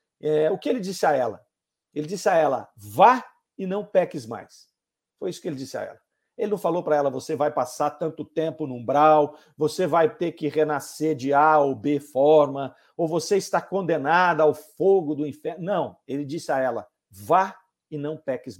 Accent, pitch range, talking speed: Brazilian, 150-220 Hz, 195 wpm